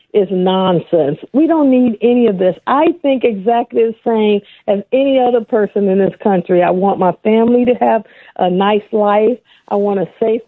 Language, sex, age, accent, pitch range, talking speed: English, female, 50-69, American, 195-240 Hz, 190 wpm